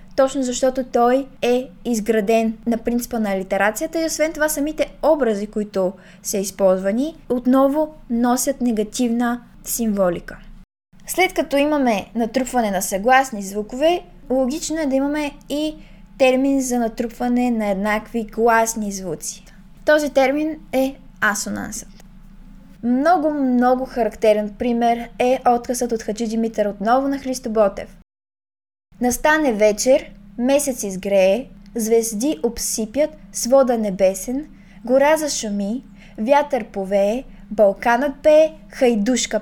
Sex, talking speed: female, 110 wpm